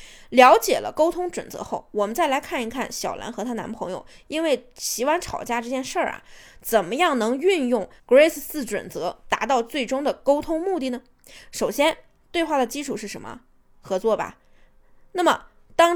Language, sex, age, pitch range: Chinese, female, 20-39, 240-335 Hz